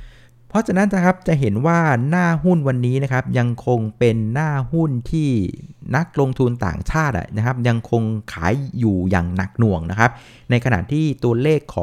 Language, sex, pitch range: Thai, male, 105-130 Hz